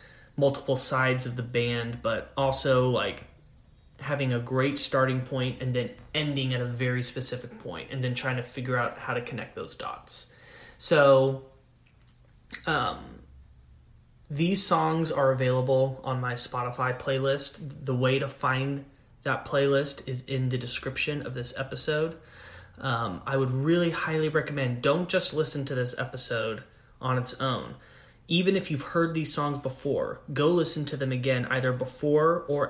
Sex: male